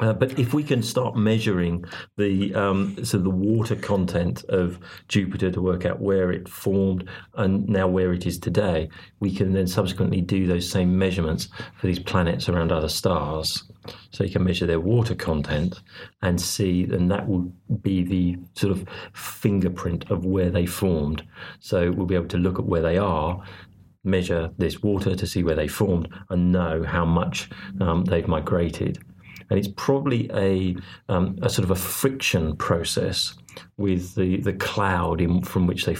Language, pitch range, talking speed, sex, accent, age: English, 85-100 Hz, 175 wpm, male, British, 40-59